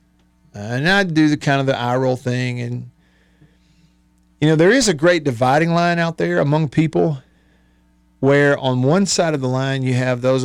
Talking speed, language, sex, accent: 190 wpm, English, male, American